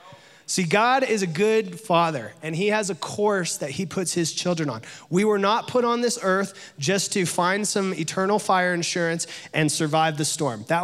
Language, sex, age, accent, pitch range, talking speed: English, male, 30-49, American, 165-210 Hz, 200 wpm